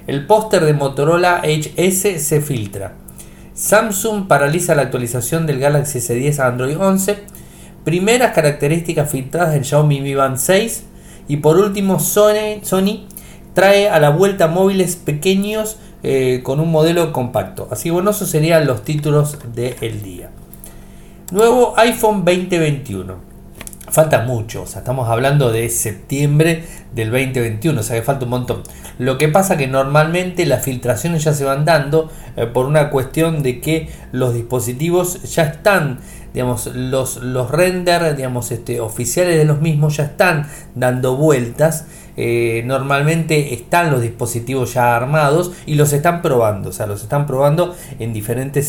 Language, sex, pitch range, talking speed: Spanish, male, 125-170 Hz, 150 wpm